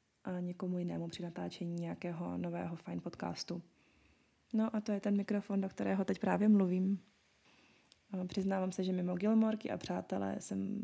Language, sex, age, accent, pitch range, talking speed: Czech, female, 20-39, native, 175-205 Hz, 155 wpm